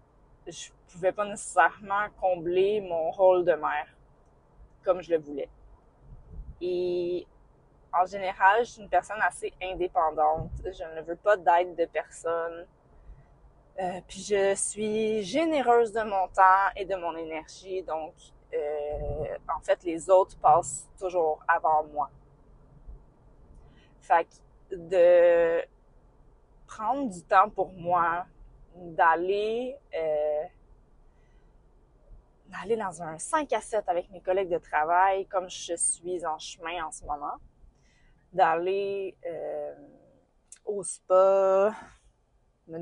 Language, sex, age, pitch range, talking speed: French, female, 20-39, 160-195 Hz, 120 wpm